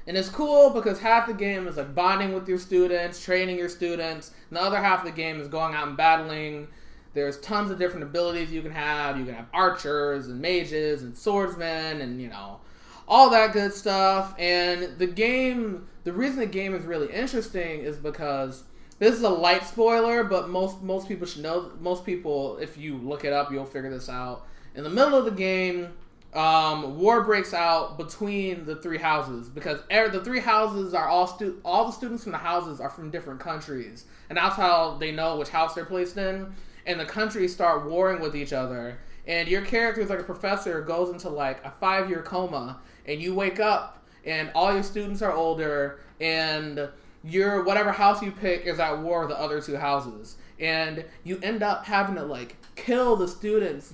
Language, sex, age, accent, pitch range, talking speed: English, male, 20-39, American, 150-195 Hz, 200 wpm